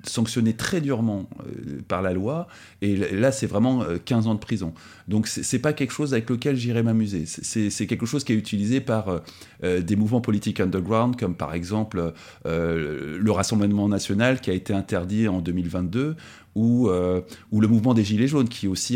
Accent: French